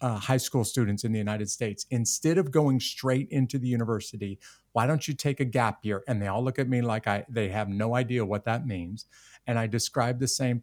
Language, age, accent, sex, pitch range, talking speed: English, 50-69, American, male, 115-140 Hz, 235 wpm